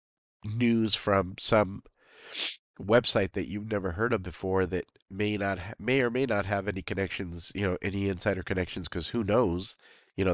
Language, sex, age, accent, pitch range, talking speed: English, male, 40-59, American, 90-105 Hz, 175 wpm